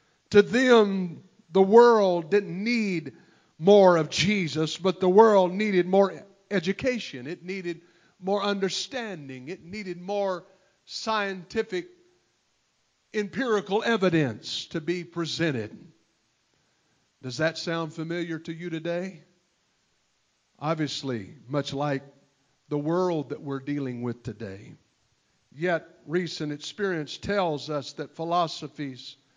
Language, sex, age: English, male, 50-69